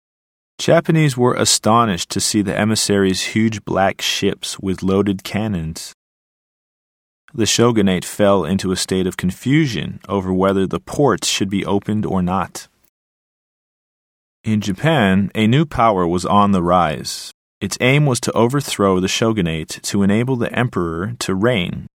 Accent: American